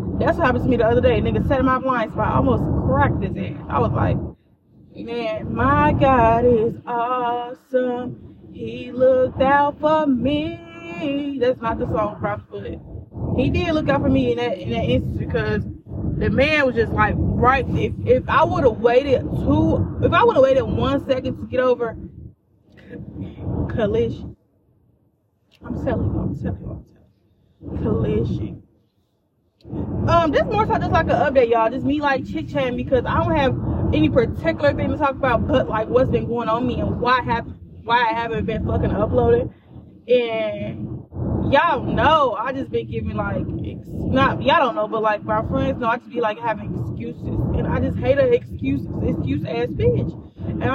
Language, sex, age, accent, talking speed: English, female, 20-39, American, 185 wpm